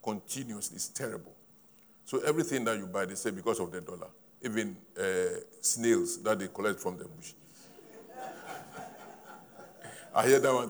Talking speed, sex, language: 150 wpm, male, English